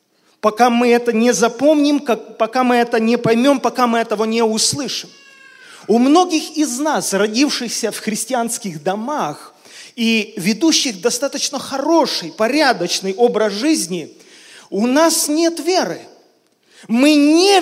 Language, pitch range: Russian, 220-305 Hz